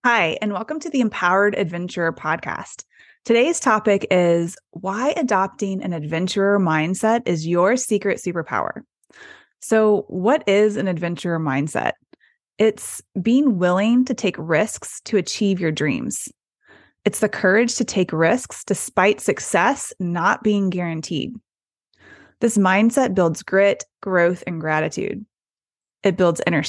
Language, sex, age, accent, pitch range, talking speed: English, female, 20-39, American, 180-235 Hz, 130 wpm